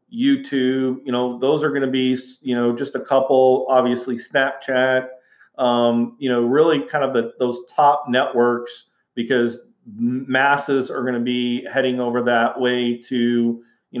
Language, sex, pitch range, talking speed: English, male, 125-145 Hz, 155 wpm